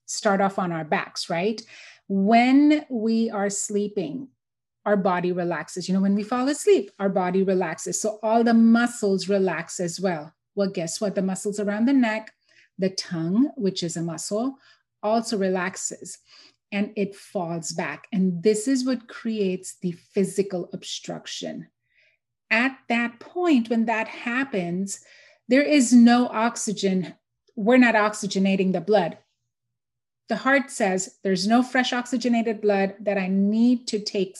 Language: English